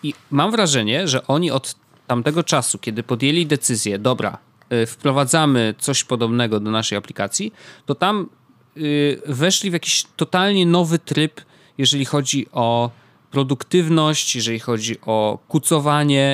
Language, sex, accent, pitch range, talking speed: Polish, male, native, 120-155 Hz, 125 wpm